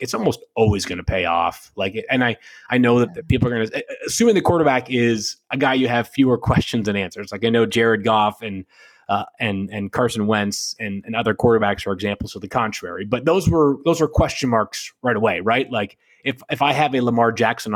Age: 30-49